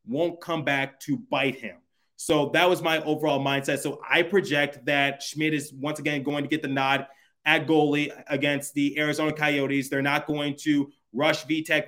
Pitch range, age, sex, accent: 140-160 Hz, 20-39, male, American